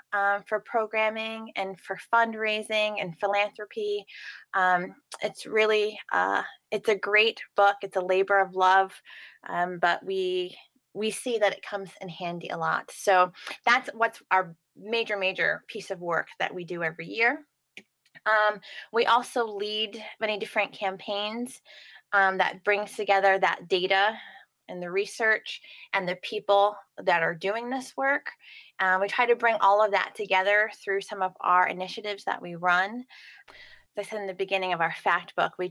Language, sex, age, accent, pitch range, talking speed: English, female, 20-39, American, 185-220 Hz, 165 wpm